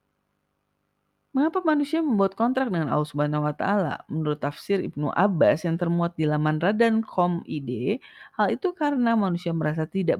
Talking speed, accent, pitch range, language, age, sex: 130 wpm, native, 155-240 Hz, Indonesian, 30-49, female